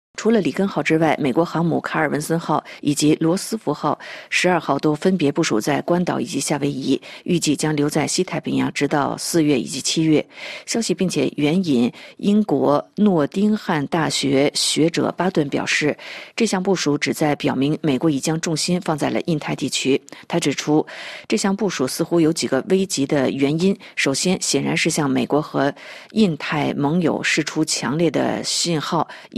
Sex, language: female, Chinese